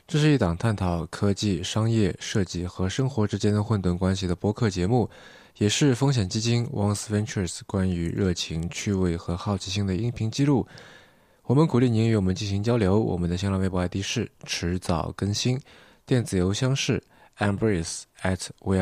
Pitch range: 90-110 Hz